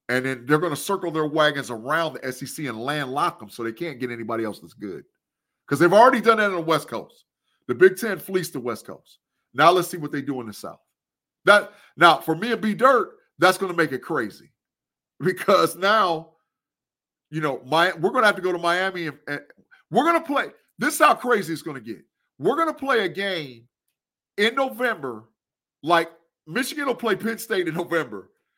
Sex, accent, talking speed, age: male, American, 215 wpm, 50-69